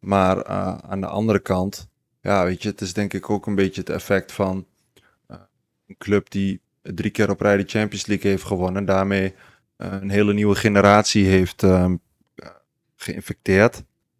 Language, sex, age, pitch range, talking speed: Dutch, male, 20-39, 90-100 Hz, 170 wpm